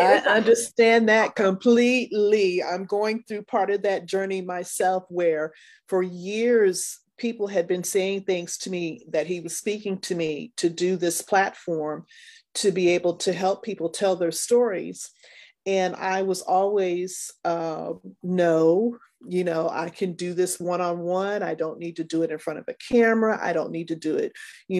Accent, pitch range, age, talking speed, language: American, 180-230 Hz, 30-49, 175 wpm, English